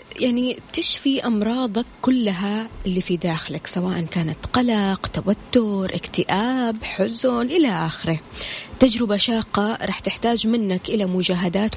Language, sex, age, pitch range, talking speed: Arabic, female, 20-39, 185-245 Hz, 110 wpm